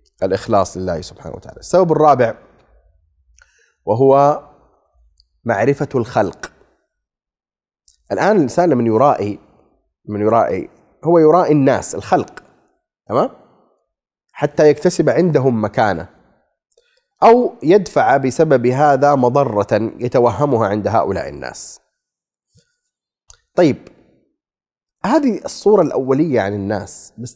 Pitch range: 110-180 Hz